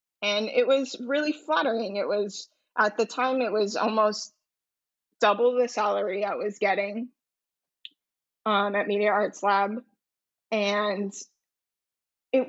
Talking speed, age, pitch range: 125 wpm, 20-39, 220-275 Hz